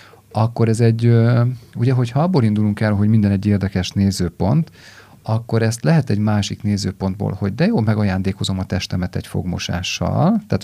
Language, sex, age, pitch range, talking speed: Hungarian, male, 40-59, 100-115 Hz, 160 wpm